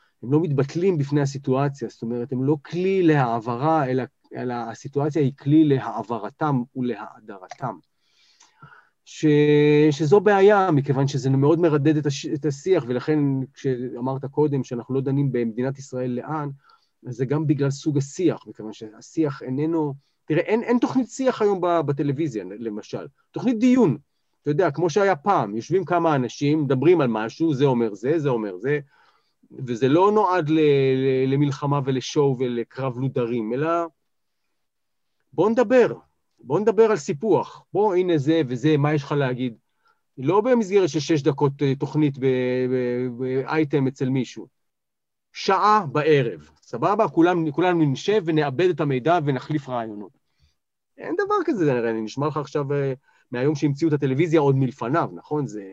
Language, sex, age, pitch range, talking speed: Hebrew, male, 30-49, 130-165 Hz, 145 wpm